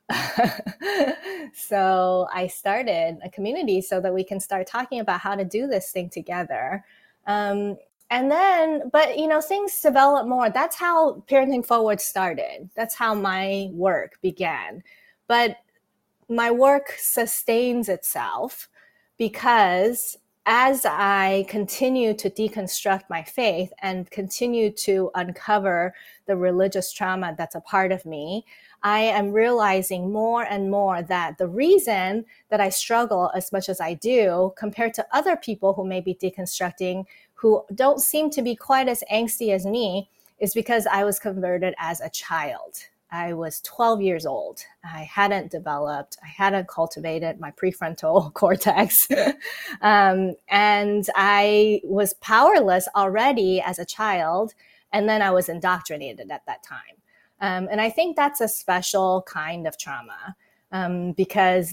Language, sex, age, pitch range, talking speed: English, female, 30-49, 185-230 Hz, 145 wpm